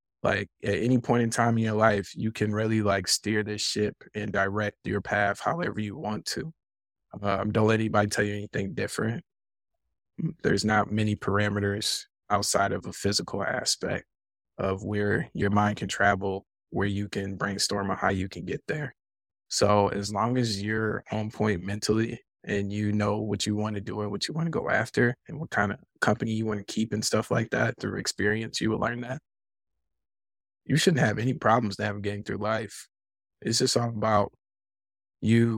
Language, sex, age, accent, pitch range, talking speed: English, male, 20-39, American, 100-110 Hz, 190 wpm